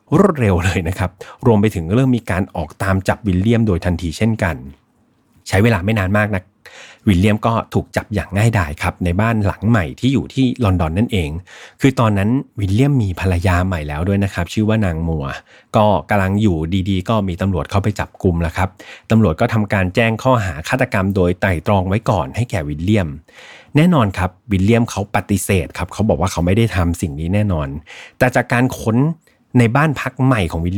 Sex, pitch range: male, 90-115 Hz